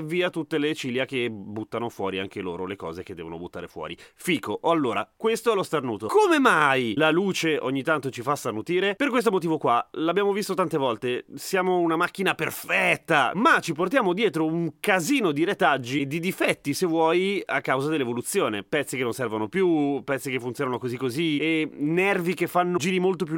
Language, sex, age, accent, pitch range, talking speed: Italian, male, 30-49, native, 125-195 Hz, 195 wpm